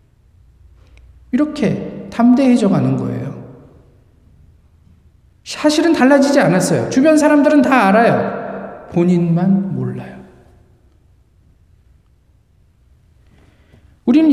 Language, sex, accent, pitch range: Korean, male, native, 195-280 Hz